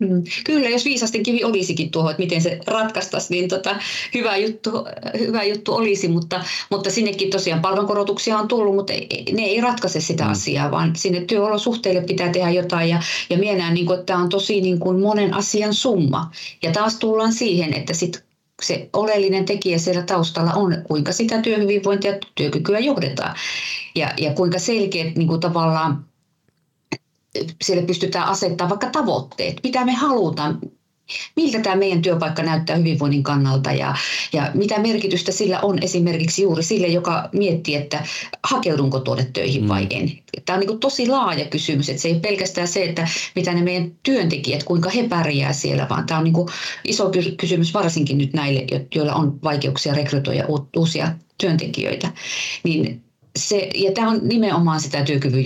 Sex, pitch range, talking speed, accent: female, 145-200 Hz, 160 wpm, native